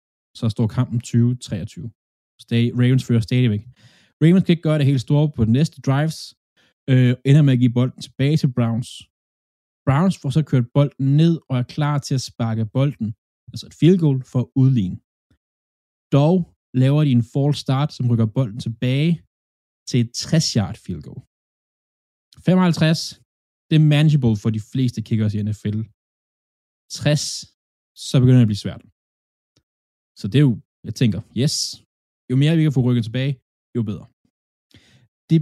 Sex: male